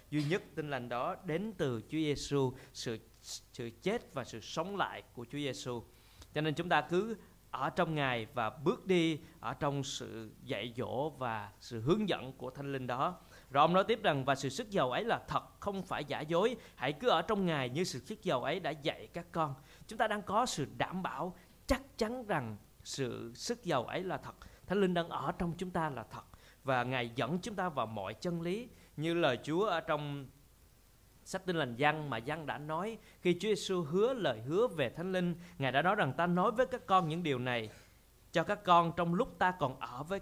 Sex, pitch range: male, 135-180 Hz